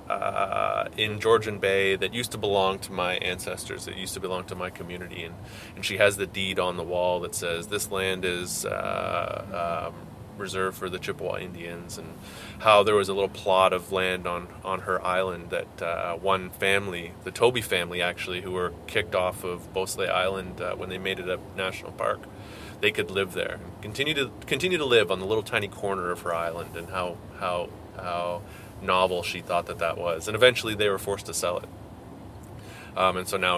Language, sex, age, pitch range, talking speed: English, male, 20-39, 90-110 Hz, 205 wpm